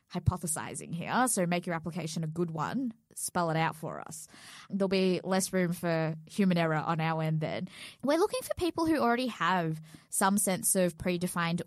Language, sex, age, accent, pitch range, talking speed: English, female, 20-39, Australian, 160-190 Hz, 185 wpm